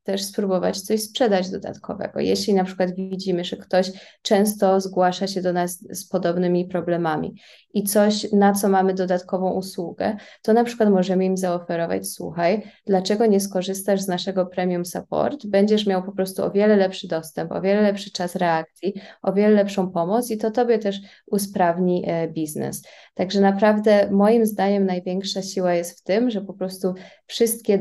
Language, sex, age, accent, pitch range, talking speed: Polish, female, 20-39, native, 180-200 Hz, 165 wpm